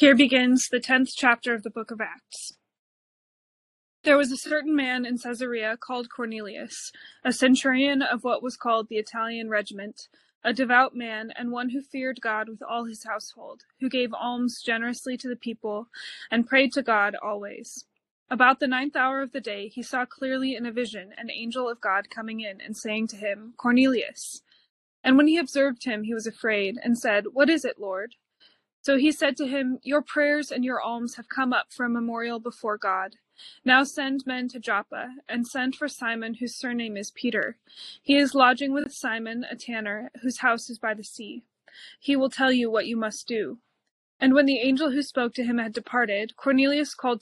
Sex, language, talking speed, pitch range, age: female, English, 195 wpm, 225-265 Hz, 20-39